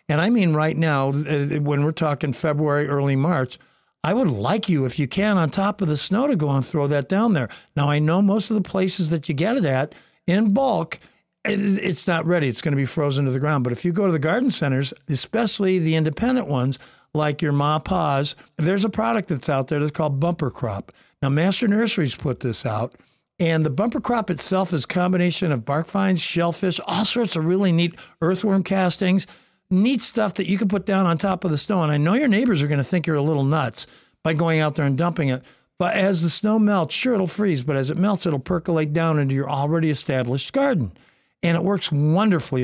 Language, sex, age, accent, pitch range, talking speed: English, male, 60-79, American, 145-190 Hz, 230 wpm